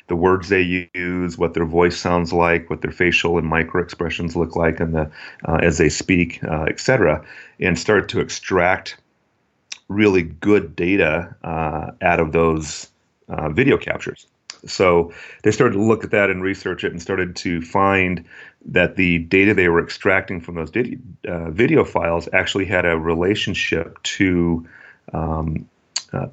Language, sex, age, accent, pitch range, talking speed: English, male, 30-49, American, 80-90 Hz, 165 wpm